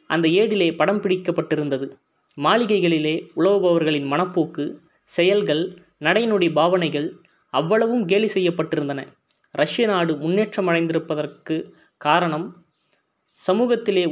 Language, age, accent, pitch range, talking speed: Tamil, 20-39, native, 155-195 Hz, 75 wpm